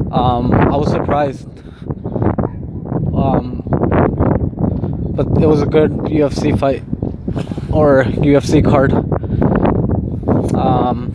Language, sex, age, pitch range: English, male, 20-39, 130-150 Hz